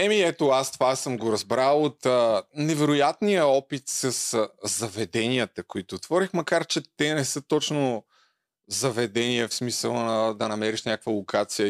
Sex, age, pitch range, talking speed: male, 30-49, 110-145 Hz, 155 wpm